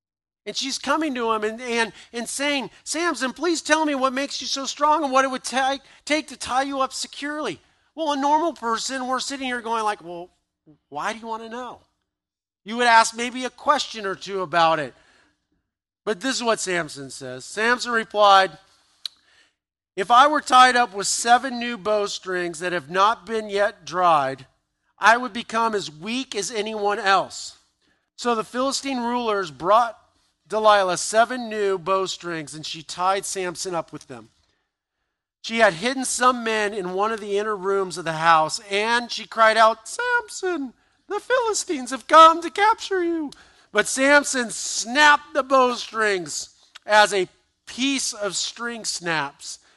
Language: English